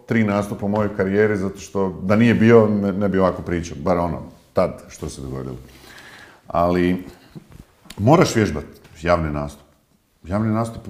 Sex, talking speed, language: male, 150 wpm, Croatian